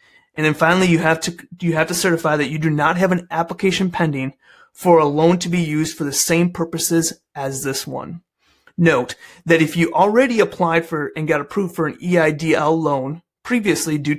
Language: English